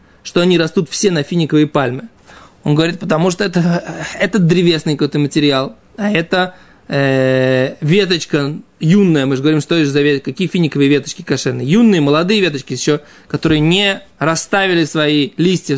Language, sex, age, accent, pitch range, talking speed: Russian, male, 20-39, native, 150-200 Hz, 155 wpm